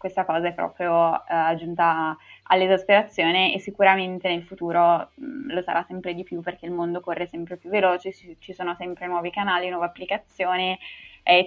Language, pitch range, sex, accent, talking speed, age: Italian, 170-195 Hz, female, native, 175 wpm, 20-39